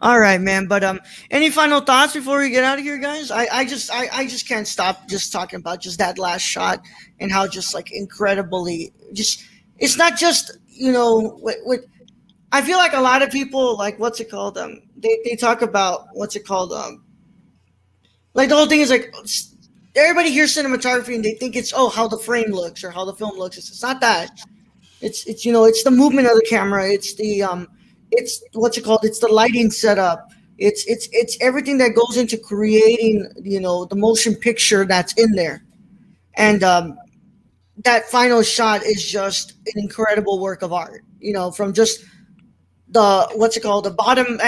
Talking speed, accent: 200 wpm, American